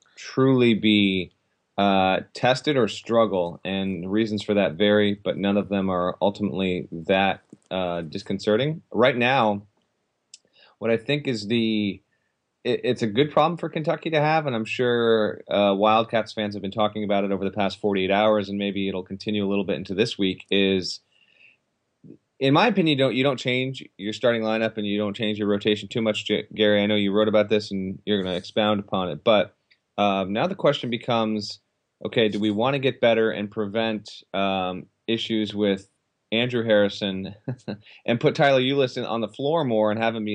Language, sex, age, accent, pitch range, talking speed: English, male, 30-49, American, 100-115 Hz, 190 wpm